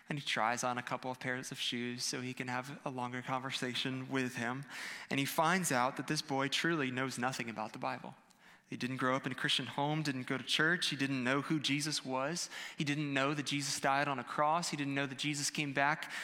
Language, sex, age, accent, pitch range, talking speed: English, male, 20-39, American, 125-150 Hz, 245 wpm